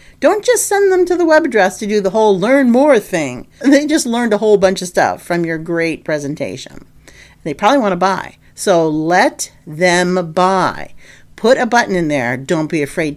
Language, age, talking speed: English, 50-69, 200 wpm